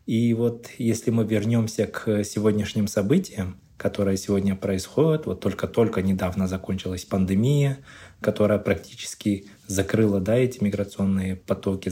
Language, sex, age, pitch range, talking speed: Russian, male, 20-39, 100-115 Hz, 110 wpm